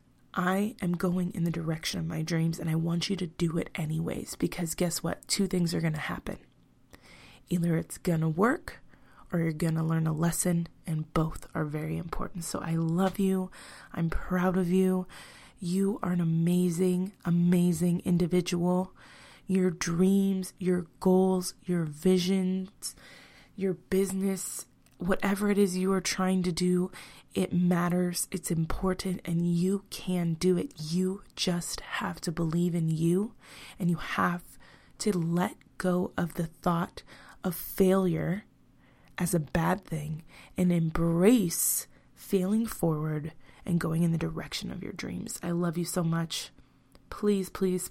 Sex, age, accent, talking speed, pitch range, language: female, 20-39, American, 155 wpm, 165-185 Hz, English